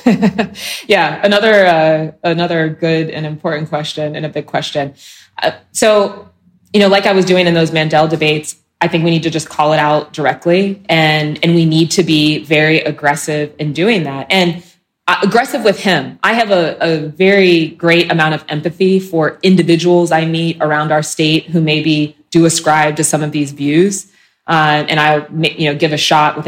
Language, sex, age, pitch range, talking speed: English, female, 20-39, 155-180 Hz, 195 wpm